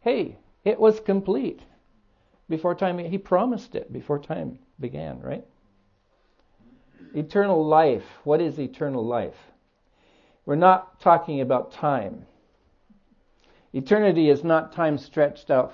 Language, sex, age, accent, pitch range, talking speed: English, male, 60-79, American, 125-170 Hz, 115 wpm